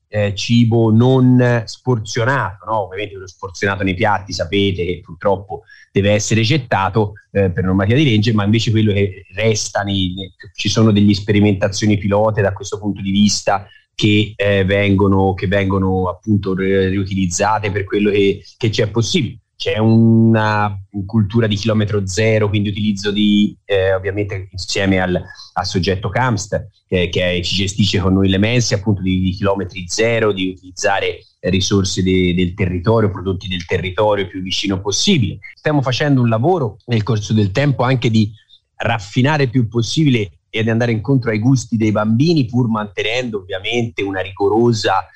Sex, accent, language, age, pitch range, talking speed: male, native, Italian, 30-49, 95-115 Hz, 155 wpm